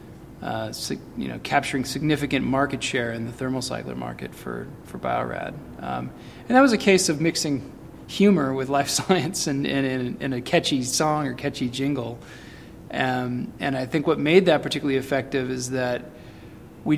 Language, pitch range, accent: English, 120-145 Hz, American